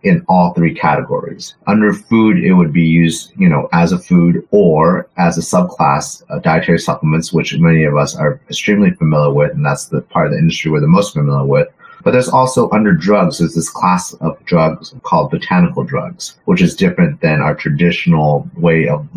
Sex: male